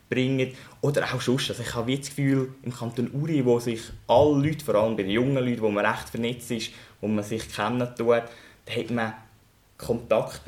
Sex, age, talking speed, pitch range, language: male, 10-29, 200 wpm, 110-135 Hz, German